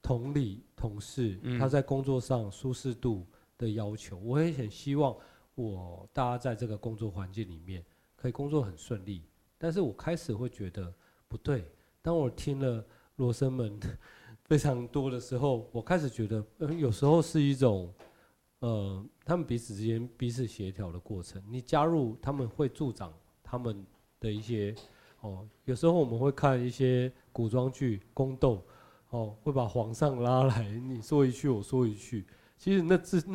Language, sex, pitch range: Chinese, male, 105-140 Hz